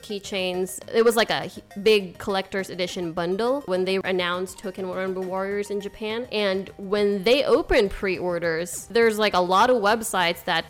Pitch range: 180-215 Hz